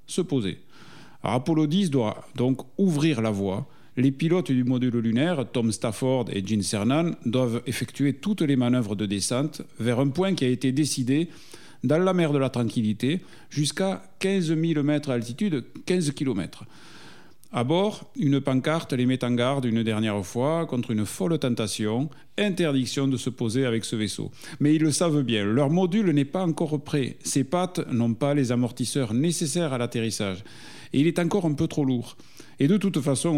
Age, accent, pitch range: 50-69, French, 115-155 Hz